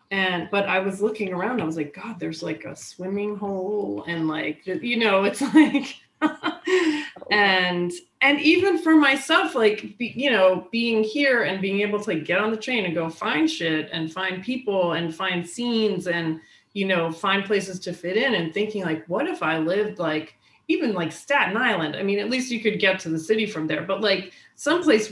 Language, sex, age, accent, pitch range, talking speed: English, female, 30-49, American, 165-210 Hz, 200 wpm